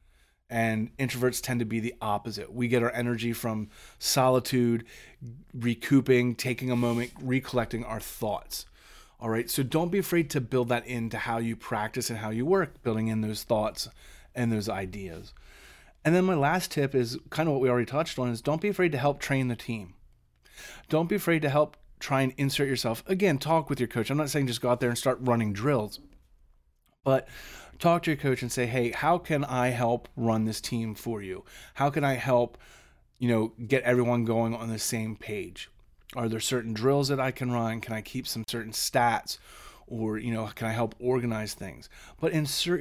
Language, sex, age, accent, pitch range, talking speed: English, male, 30-49, American, 115-140 Hz, 205 wpm